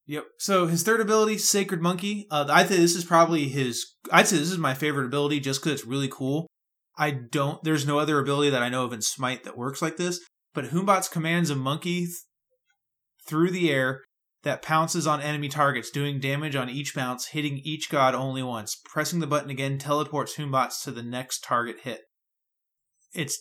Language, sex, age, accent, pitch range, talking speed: English, male, 20-39, American, 135-165 Hz, 200 wpm